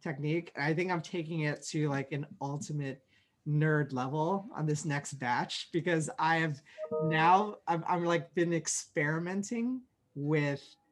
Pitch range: 150-190 Hz